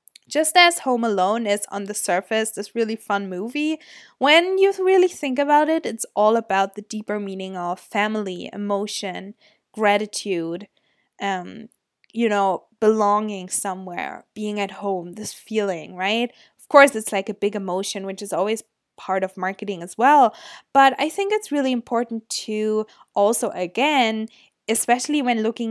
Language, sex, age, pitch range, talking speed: English, female, 20-39, 195-230 Hz, 155 wpm